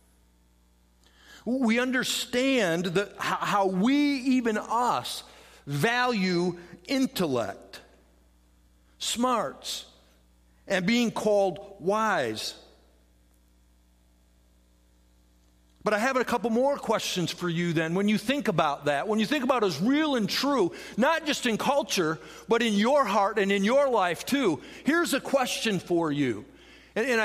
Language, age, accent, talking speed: English, 50-69, American, 125 wpm